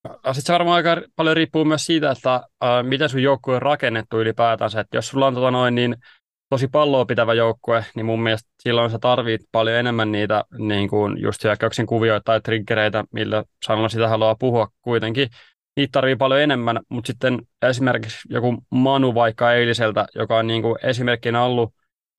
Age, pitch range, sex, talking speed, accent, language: 20-39, 110-125 Hz, male, 170 wpm, native, Finnish